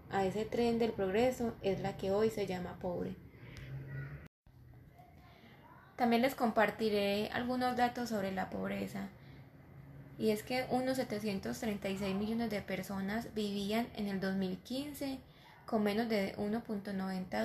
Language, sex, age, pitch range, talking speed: Spanish, female, 10-29, 190-225 Hz, 125 wpm